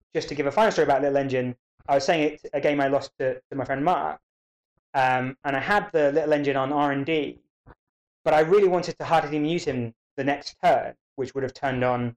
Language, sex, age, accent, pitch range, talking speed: English, male, 20-39, British, 125-150 Hz, 230 wpm